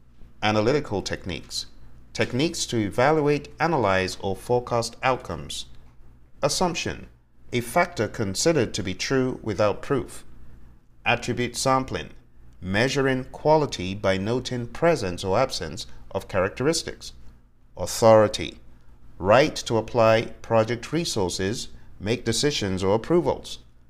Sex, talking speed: male, 100 wpm